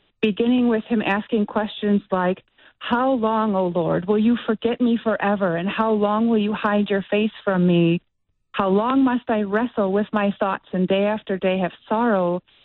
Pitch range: 190-225 Hz